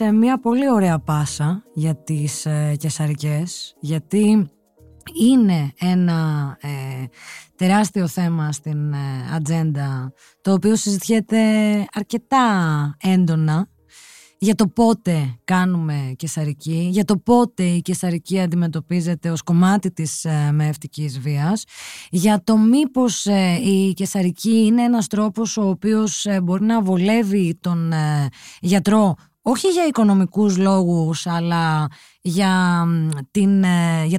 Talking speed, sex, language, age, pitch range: 115 wpm, female, Greek, 20-39, 160-210 Hz